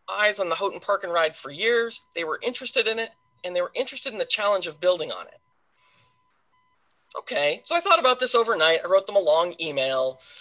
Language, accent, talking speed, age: English, American, 220 wpm, 20-39